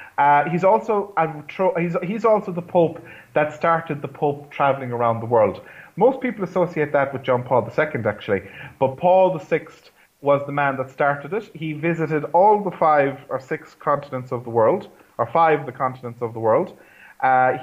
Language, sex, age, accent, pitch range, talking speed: English, male, 30-49, Irish, 130-170 Hz, 195 wpm